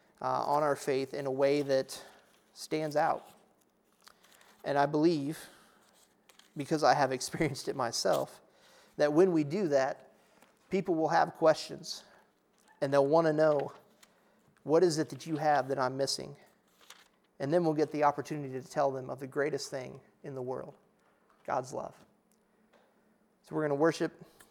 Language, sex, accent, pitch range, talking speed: English, male, American, 135-160 Hz, 160 wpm